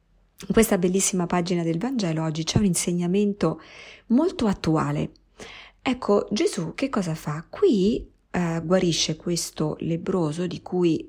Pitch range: 155-195 Hz